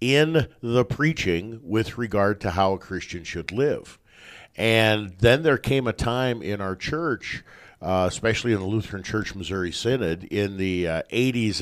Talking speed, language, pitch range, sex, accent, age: 165 wpm, English, 95-115 Hz, male, American, 50-69